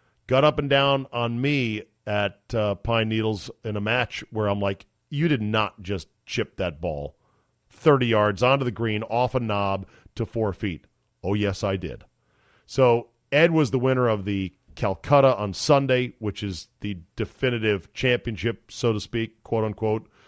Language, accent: English, American